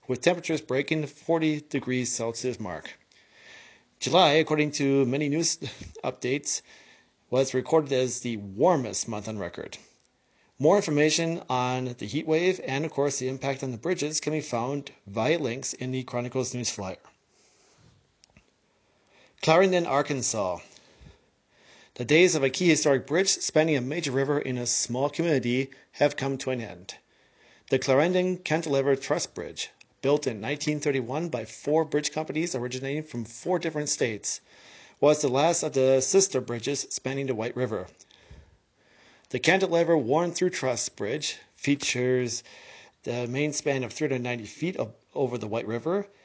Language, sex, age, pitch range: English, male, 40-59, 125-155 Hz